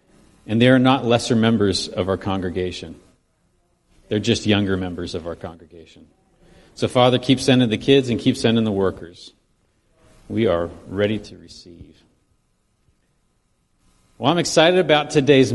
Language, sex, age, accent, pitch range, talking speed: English, male, 40-59, American, 95-120 Hz, 145 wpm